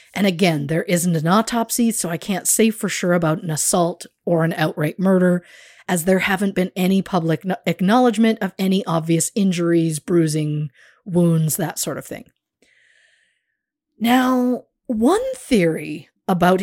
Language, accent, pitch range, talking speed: English, American, 170-230 Hz, 145 wpm